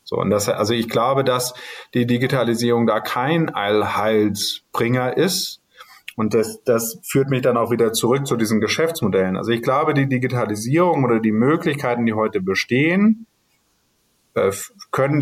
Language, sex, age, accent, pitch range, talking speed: German, male, 30-49, German, 105-130 Hz, 150 wpm